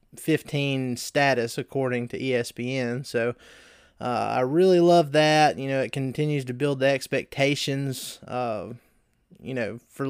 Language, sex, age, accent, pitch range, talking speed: English, male, 20-39, American, 125-150 Hz, 135 wpm